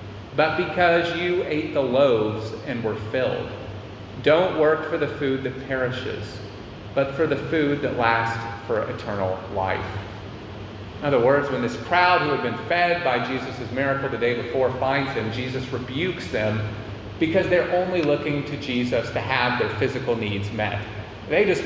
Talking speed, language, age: 165 wpm, English, 30-49